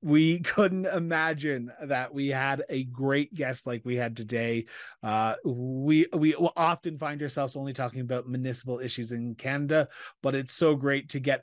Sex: male